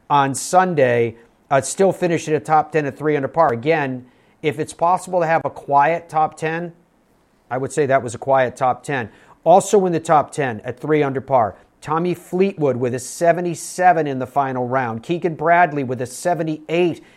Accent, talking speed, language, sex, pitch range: American, 190 wpm, English, male, 130-155 Hz